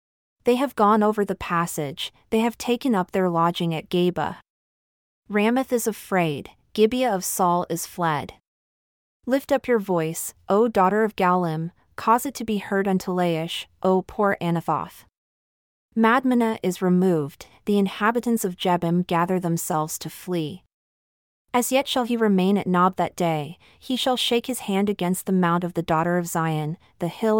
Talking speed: 165 wpm